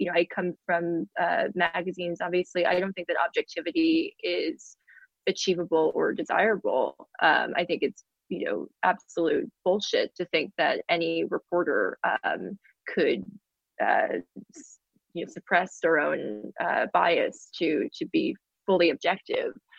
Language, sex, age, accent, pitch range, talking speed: English, female, 20-39, American, 175-260 Hz, 135 wpm